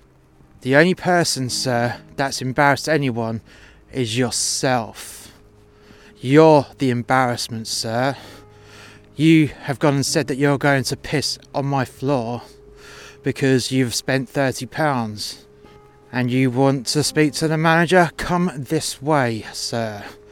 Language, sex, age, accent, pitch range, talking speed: English, male, 30-49, British, 120-155 Hz, 125 wpm